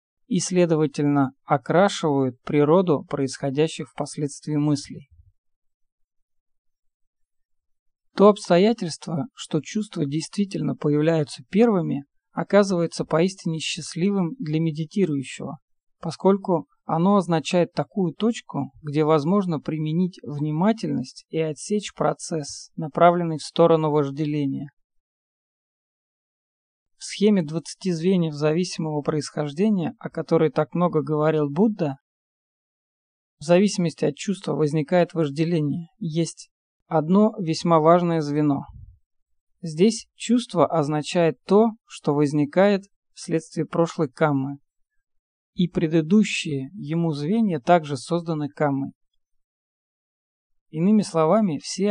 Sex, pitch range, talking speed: male, 150-180 Hz, 90 wpm